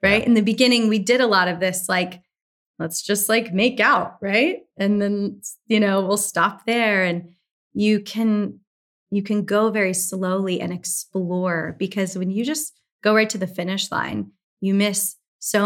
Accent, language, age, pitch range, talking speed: American, English, 20-39, 180-210 Hz, 180 wpm